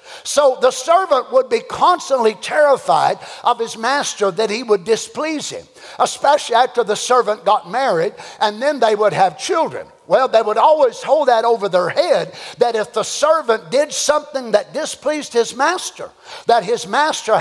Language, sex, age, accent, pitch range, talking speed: English, male, 50-69, American, 210-300 Hz, 170 wpm